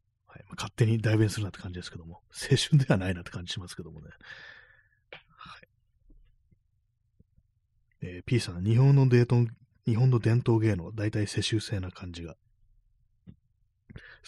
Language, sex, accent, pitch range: Japanese, male, native, 95-115 Hz